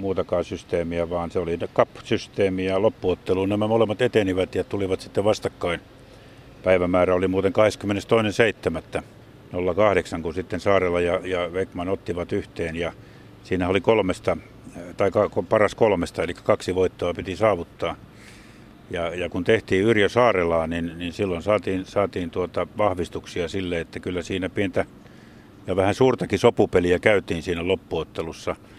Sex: male